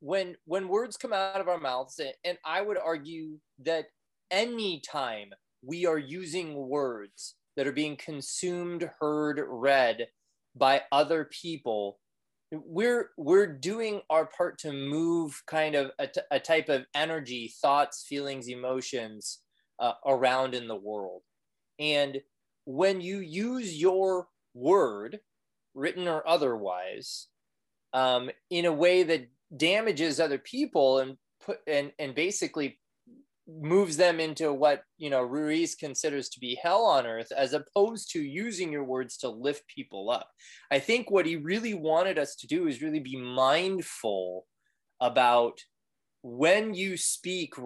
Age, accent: 20-39, American